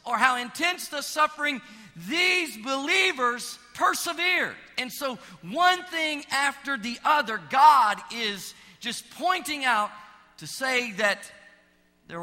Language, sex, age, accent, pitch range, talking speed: English, male, 40-59, American, 195-250 Hz, 120 wpm